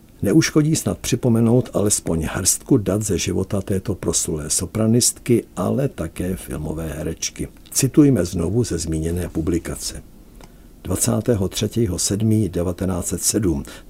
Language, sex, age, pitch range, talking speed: Czech, male, 60-79, 80-105 Hz, 90 wpm